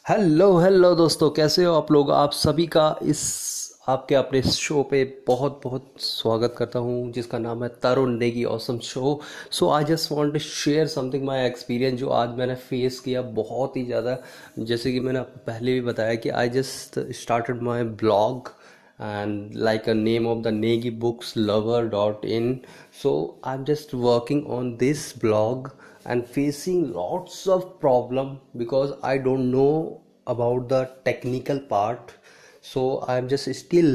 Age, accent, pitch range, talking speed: 20-39, native, 120-145 Hz, 165 wpm